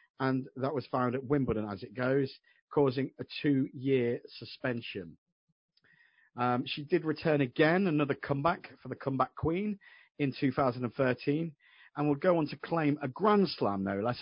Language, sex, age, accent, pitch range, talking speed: English, male, 40-59, British, 115-150 Hz, 155 wpm